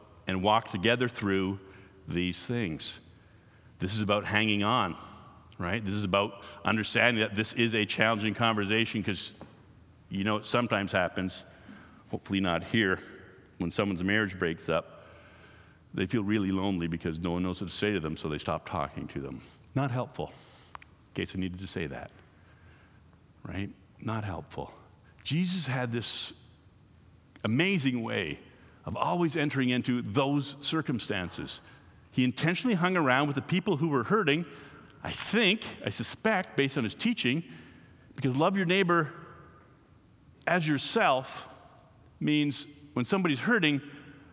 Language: English